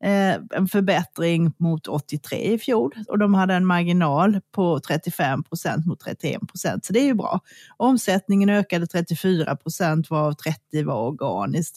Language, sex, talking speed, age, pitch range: Swedish, female, 140 wpm, 30-49, 165-220 Hz